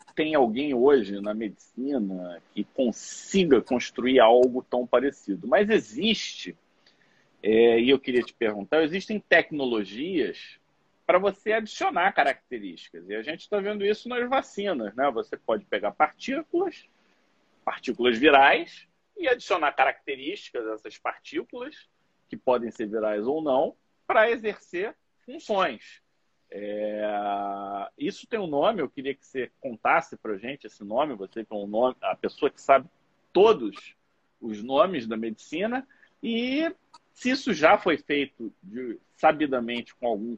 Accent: Brazilian